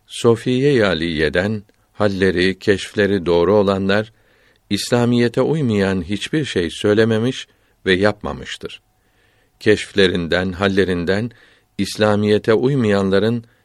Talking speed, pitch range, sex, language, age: 80 wpm, 95-110 Hz, male, Turkish, 50-69